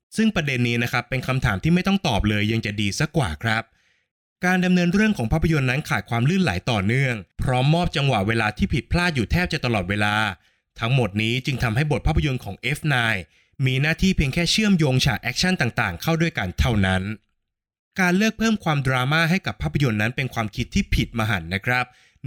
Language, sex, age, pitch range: Thai, male, 20-39, 110-160 Hz